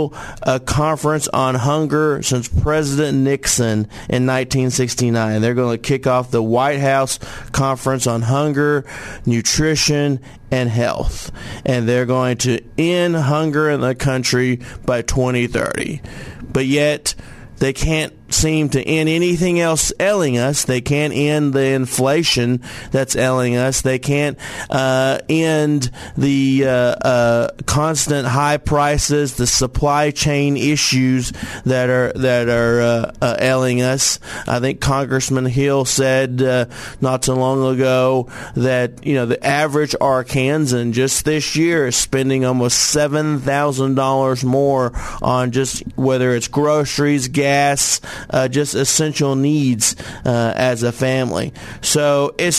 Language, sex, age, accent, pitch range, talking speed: English, male, 40-59, American, 120-145 Hz, 135 wpm